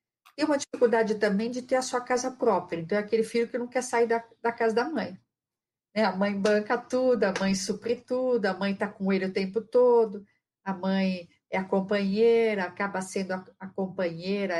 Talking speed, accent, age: 205 wpm, Brazilian, 50-69